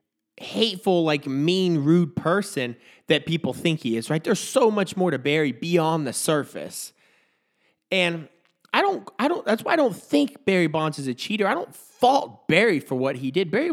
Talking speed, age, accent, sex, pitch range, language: 190 wpm, 20-39, American, male, 150-220 Hz, English